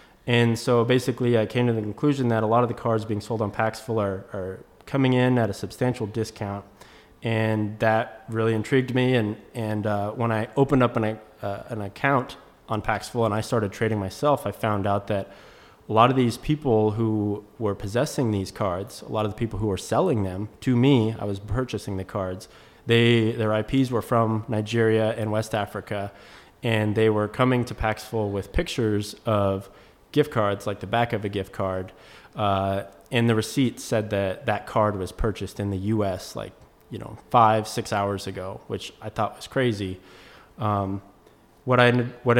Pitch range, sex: 100-120 Hz, male